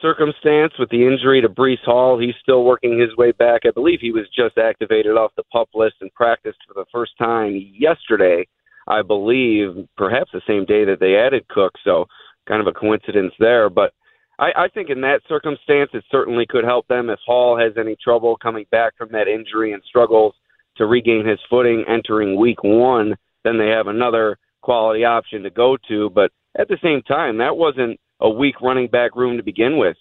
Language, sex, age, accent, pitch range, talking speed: English, male, 40-59, American, 115-150 Hz, 200 wpm